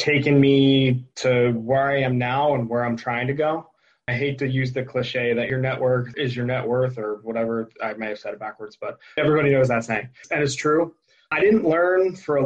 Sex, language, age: male, English, 20-39